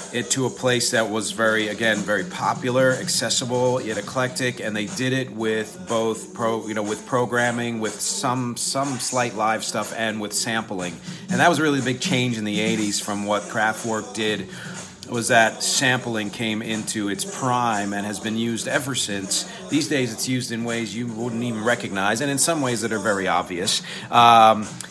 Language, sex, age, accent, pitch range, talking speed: English, male, 40-59, American, 105-125 Hz, 195 wpm